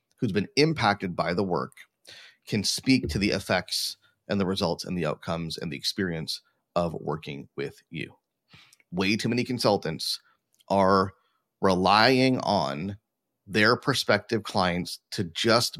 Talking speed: 135 wpm